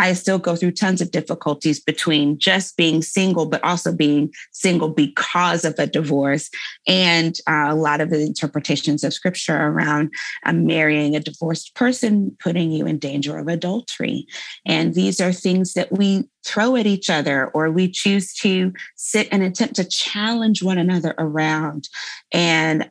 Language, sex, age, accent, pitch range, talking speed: English, female, 30-49, American, 155-190 Hz, 165 wpm